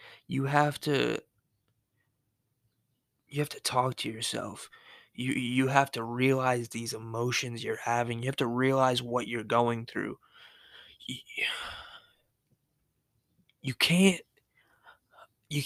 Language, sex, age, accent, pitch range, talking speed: English, male, 20-39, American, 115-140 Hz, 115 wpm